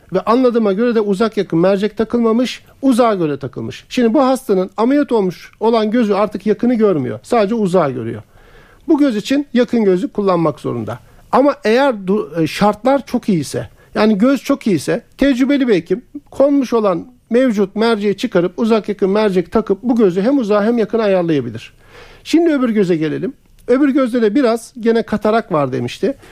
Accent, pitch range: native, 190-245 Hz